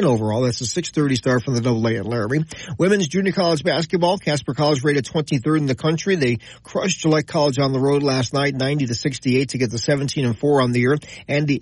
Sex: male